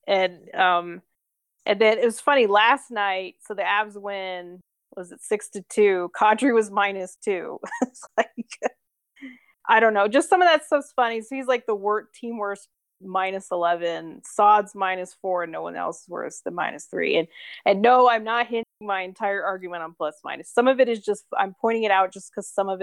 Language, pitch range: English, 185-240 Hz